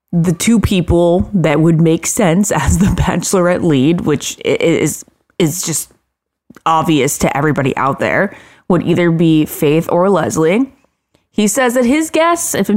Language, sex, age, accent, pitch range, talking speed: English, female, 20-39, American, 150-190 Hz, 155 wpm